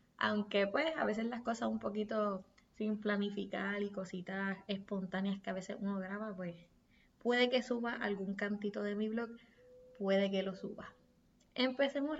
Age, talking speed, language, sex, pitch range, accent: 20-39, 160 wpm, Spanish, female, 195-235 Hz, American